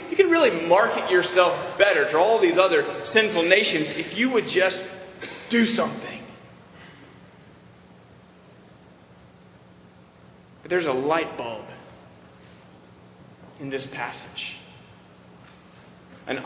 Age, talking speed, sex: 30-49, 100 wpm, male